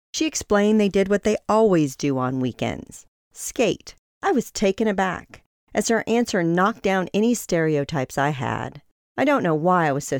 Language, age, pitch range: English, 40-59, 150-215 Hz